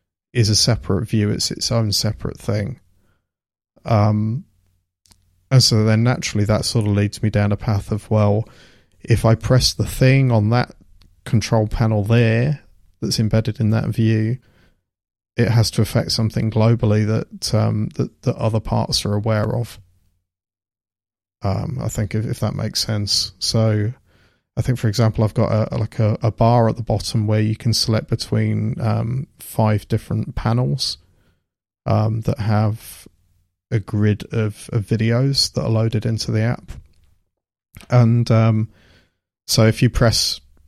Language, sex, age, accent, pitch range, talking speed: English, male, 30-49, British, 100-115 Hz, 155 wpm